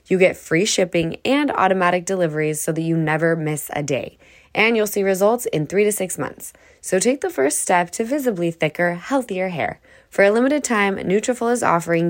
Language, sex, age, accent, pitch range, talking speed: English, female, 10-29, American, 170-235 Hz, 200 wpm